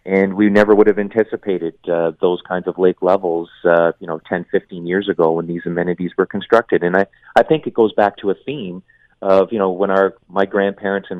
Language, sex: English, male